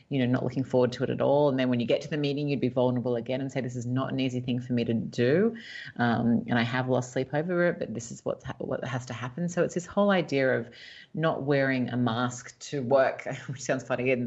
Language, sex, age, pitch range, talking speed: English, female, 30-49, 120-140 Hz, 270 wpm